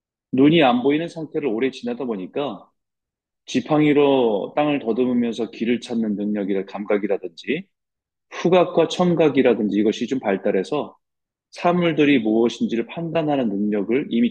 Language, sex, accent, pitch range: Korean, male, native, 115-160 Hz